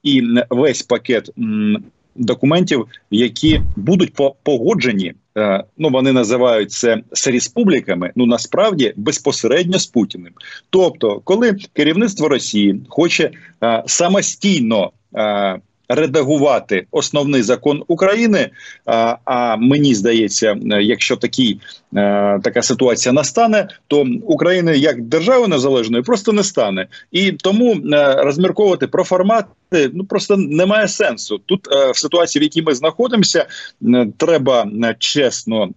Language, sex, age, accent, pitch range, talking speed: Russian, male, 40-59, native, 115-185 Hz, 105 wpm